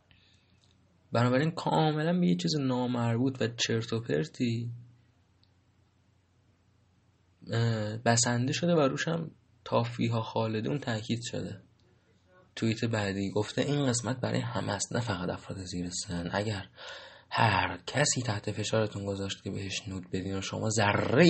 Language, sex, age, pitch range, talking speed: Persian, male, 20-39, 100-120 Hz, 120 wpm